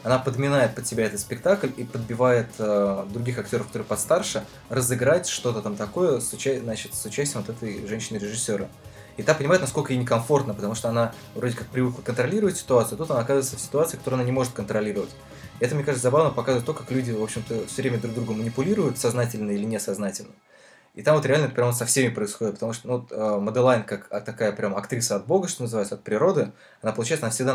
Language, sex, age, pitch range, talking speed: Russian, male, 20-39, 110-130 Hz, 215 wpm